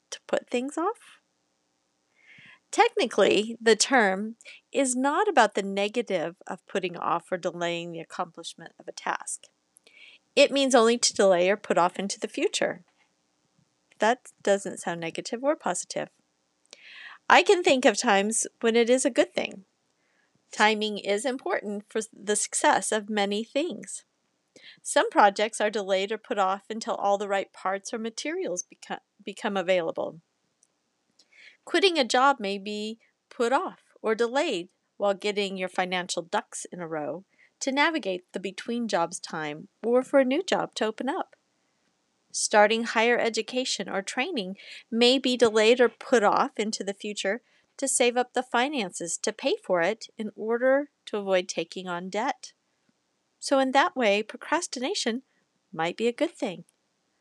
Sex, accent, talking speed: female, American, 155 wpm